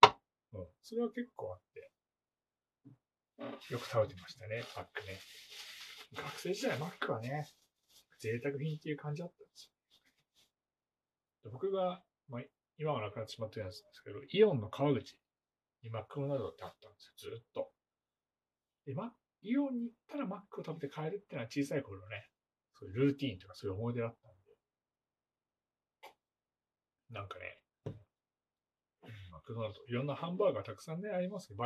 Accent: native